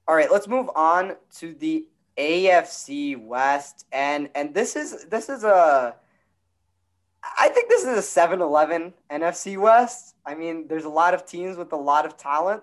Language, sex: English, male